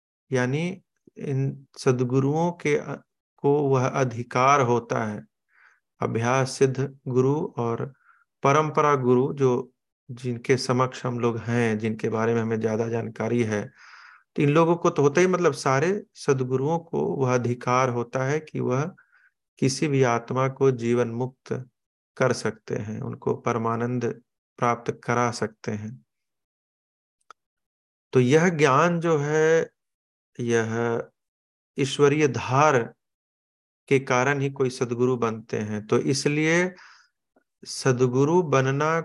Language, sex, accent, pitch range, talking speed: Hindi, male, native, 120-140 Hz, 120 wpm